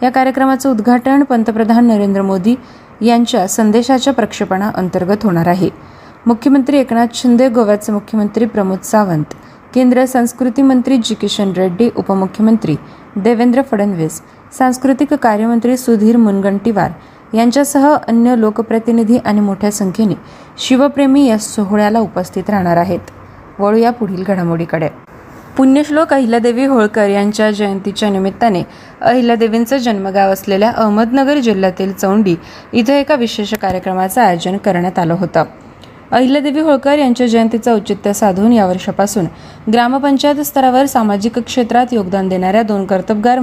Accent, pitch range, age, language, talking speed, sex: native, 195-250 Hz, 20-39, Marathi, 115 wpm, female